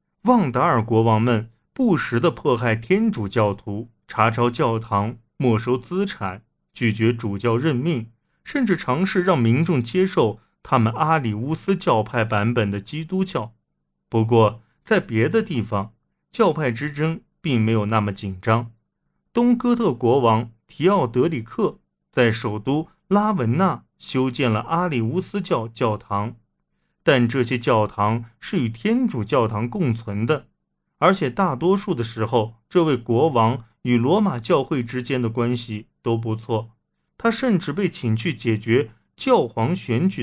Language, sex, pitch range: Chinese, male, 110-165 Hz